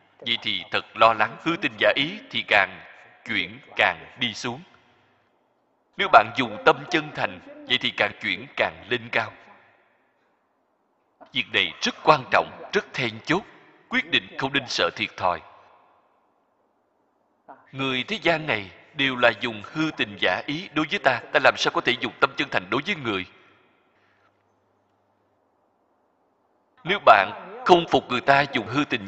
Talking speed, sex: 160 wpm, male